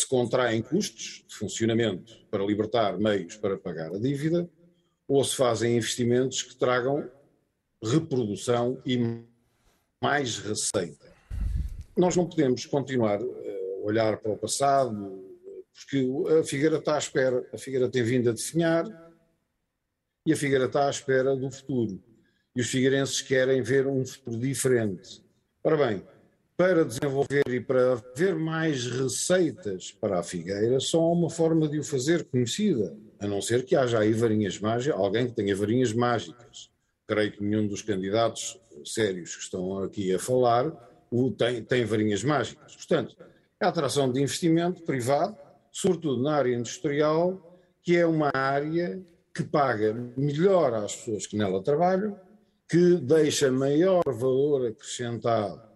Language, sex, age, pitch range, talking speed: Portuguese, male, 50-69, 115-160 Hz, 145 wpm